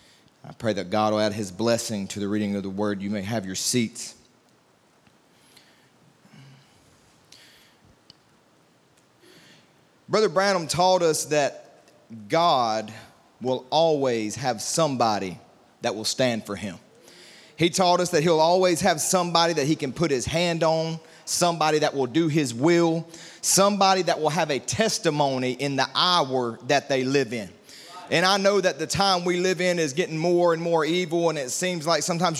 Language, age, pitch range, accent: English, 30-49, 145-185 Hz, American